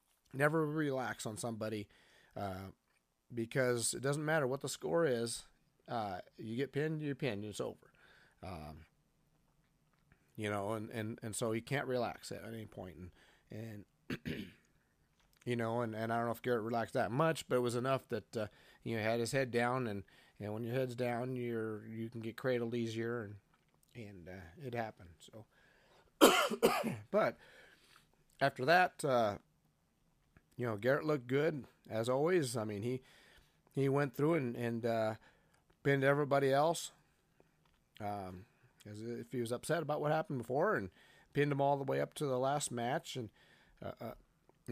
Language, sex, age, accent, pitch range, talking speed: English, male, 30-49, American, 110-140 Hz, 170 wpm